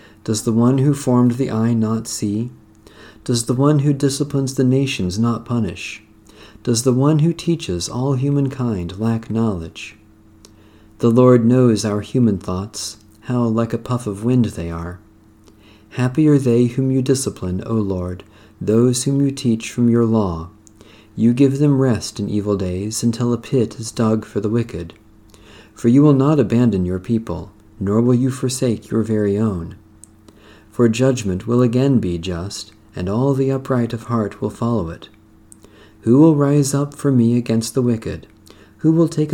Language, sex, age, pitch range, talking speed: English, male, 50-69, 105-125 Hz, 170 wpm